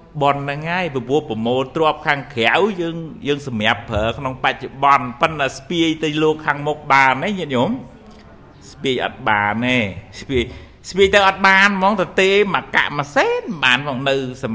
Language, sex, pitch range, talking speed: English, male, 115-165 Hz, 60 wpm